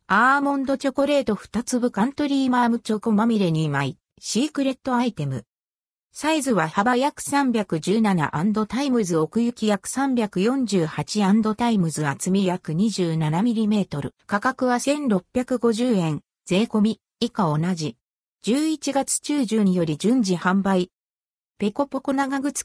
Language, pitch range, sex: Japanese, 180-260 Hz, female